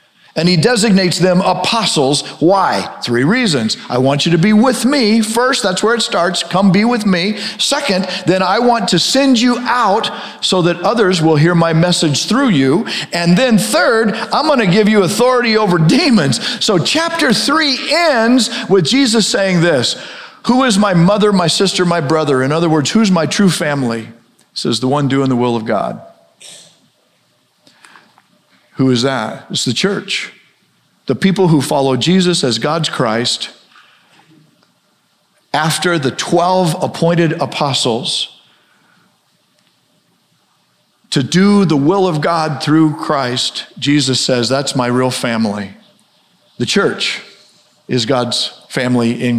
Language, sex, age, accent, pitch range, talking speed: English, male, 50-69, American, 140-205 Hz, 150 wpm